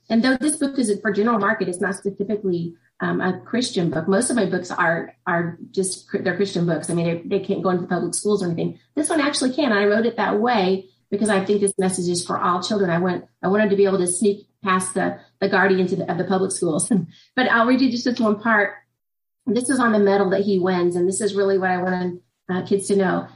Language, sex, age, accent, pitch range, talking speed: English, female, 30-49, American, 185-220 Hz, 260 wpm